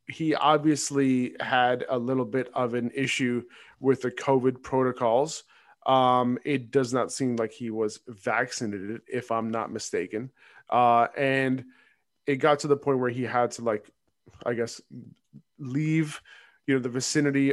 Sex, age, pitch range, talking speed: male, 20-39, 120-140 Hz, 155 wpm